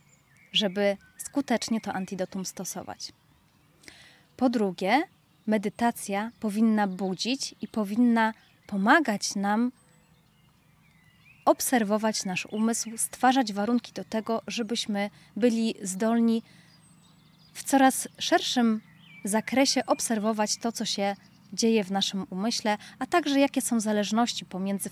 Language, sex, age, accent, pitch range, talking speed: Polish, female, 20-39, native, 195-235 Hz, 100 wpm